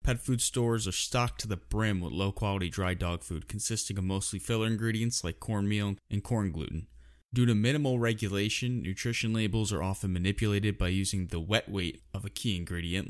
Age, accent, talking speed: 20-39, American, 190 wpm